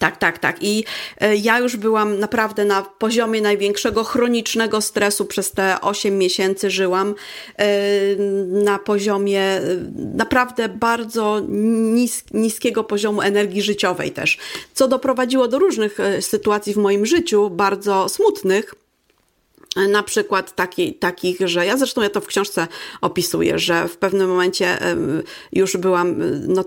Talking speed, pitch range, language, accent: 140 wpm, 185-215 Hz, Polish, native